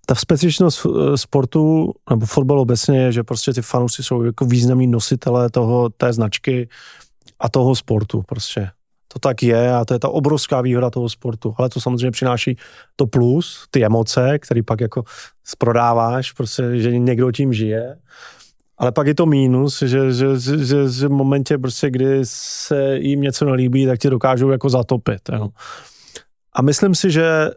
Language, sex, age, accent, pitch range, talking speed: Czech, male, 20-39, native, 120-150 Hz, 170 wpm